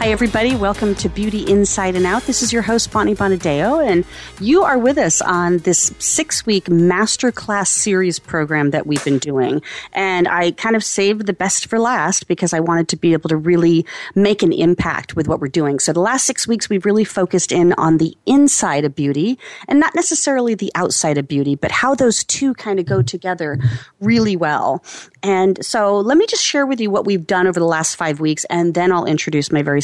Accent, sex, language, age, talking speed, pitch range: American, female, English, 40-59, 215 wpm, 165-225 Hz